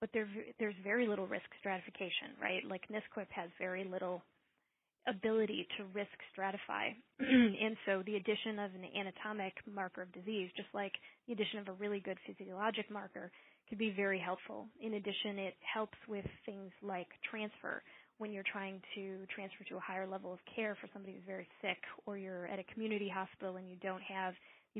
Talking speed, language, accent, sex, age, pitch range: 180 wpm, English, American, female, 20-39, 190-215 Hz